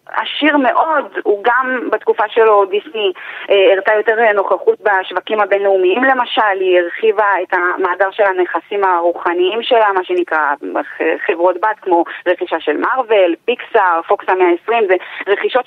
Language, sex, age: Hebrew, female, 20-39